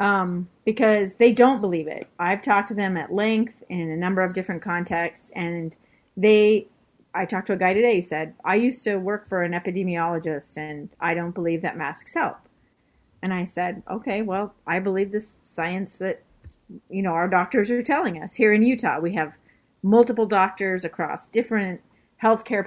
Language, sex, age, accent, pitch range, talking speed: English, female, 30-49, American, 175-220 Hz, 185 wpm